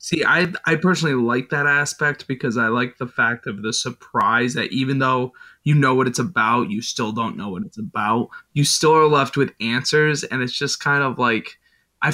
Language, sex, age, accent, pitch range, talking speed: English, male, 20-39, American, 120-145 Hz, 215 wpm